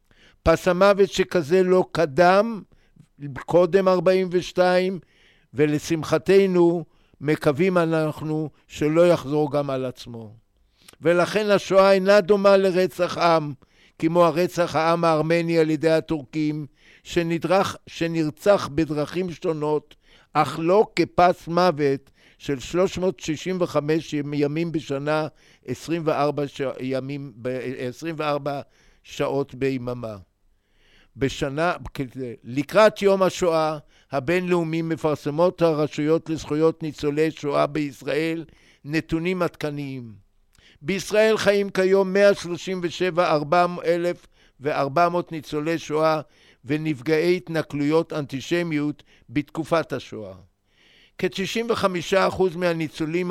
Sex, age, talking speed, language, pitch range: male, 60-79, 80 wpm, Hebrew, 145-180 Hz